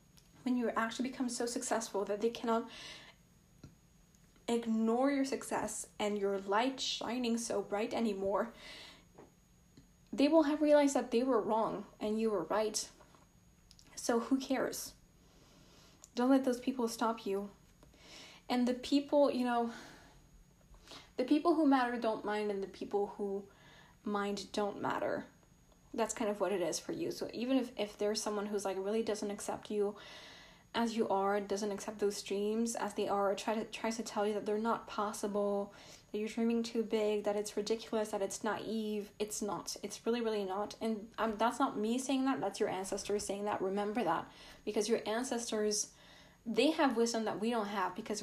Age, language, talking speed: 10-29, English, 170 wpm